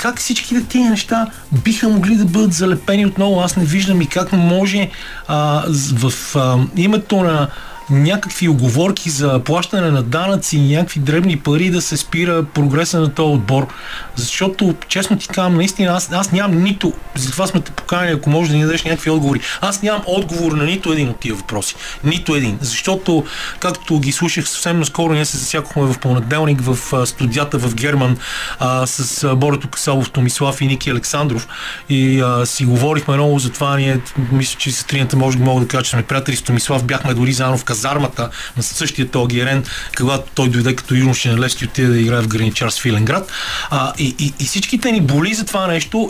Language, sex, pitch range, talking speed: Bulgarian, male, 130-175 Hz, 190 wpm